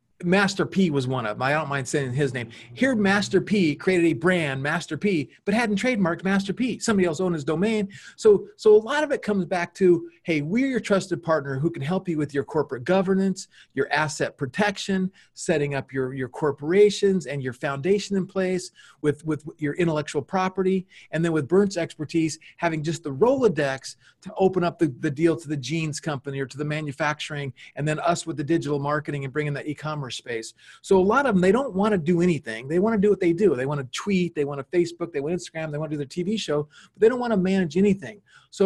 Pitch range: 150-190 Hz